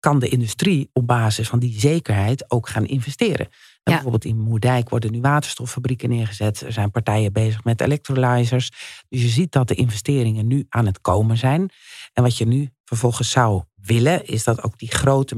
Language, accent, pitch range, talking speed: Dutch, Dutch, 110-135 Hz, 185 wpm